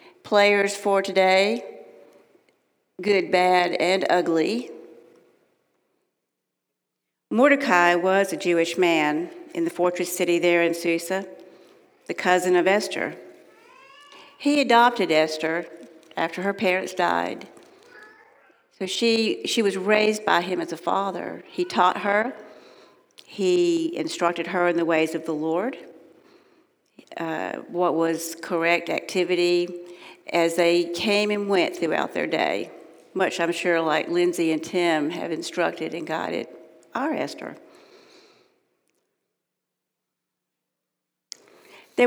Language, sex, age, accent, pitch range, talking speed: English, female, 60-79, American, 170-220 Hz, 115 wpm